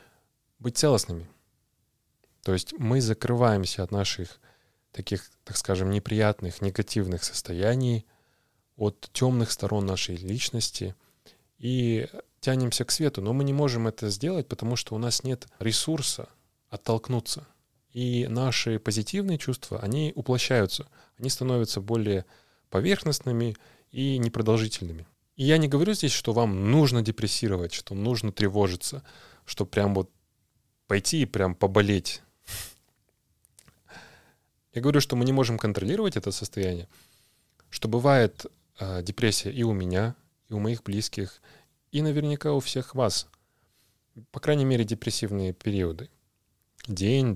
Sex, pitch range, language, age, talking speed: male, 100-125 Hz, Russian, 20-39, 125 wpm